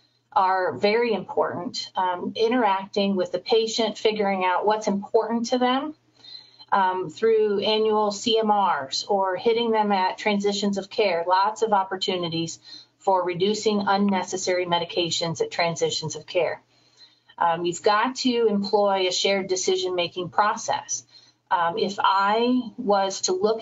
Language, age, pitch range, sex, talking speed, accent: Italian, 30-49, 185-220 Hz, female, 130 wpm, American